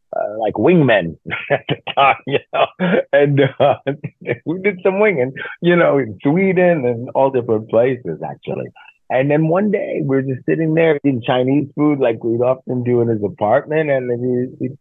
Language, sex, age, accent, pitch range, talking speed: English, male, 30-49, American, 125-170 Hz, 185 wpm